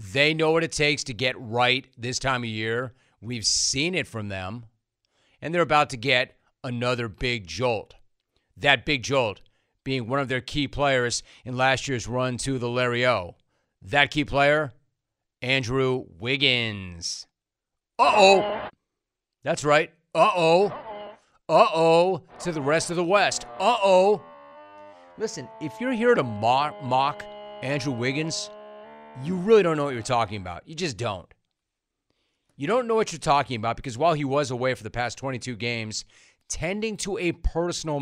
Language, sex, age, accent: English, male, 40-59, American